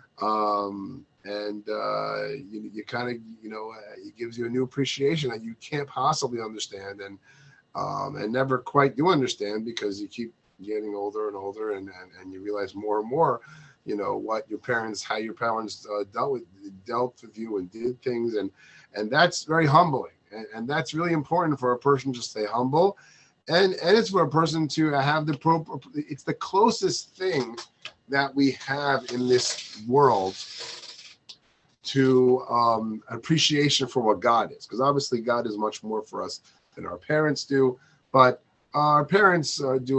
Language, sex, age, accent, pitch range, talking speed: English, male, 30-49, American, 105-140 Hz, 180 wpm